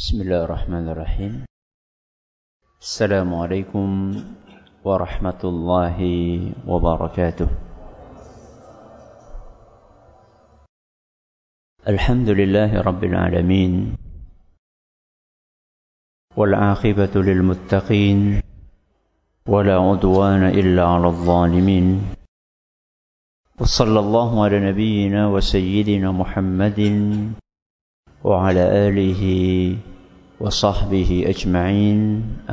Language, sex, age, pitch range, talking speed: Malay, male, 50-69, 90-105 Hz, 55 wpm